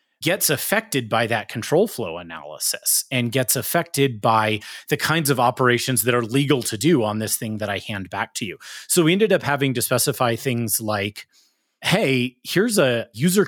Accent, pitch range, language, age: American, 110-145 Hz, English, 30-49